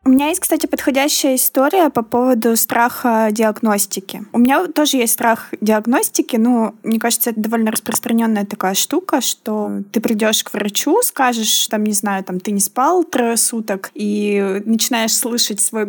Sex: female